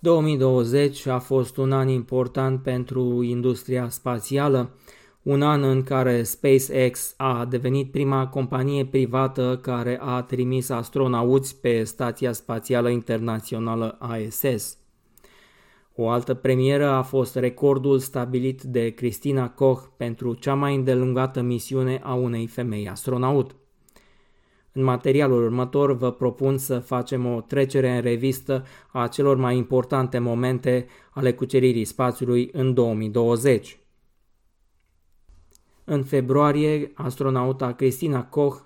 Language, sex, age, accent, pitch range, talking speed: Romanian, male, 20-39, native, 120-135 Hz, 115 wpm